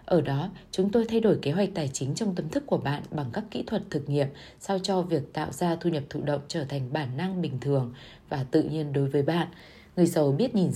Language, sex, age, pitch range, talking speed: Vietnamese, female, 20-39, 145-195 Hz, 255 wpm